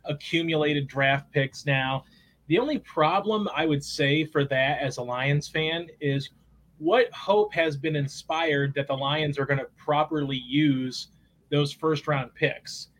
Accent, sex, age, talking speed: American, male, 30-49, 155 wpm